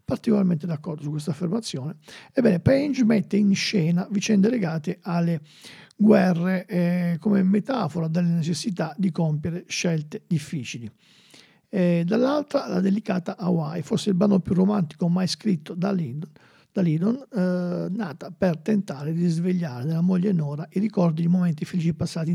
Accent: native